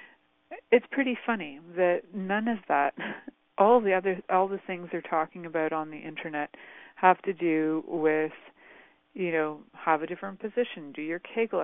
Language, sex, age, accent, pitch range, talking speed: English, female, 40-59, American, 155-185 Hz, 165 wpm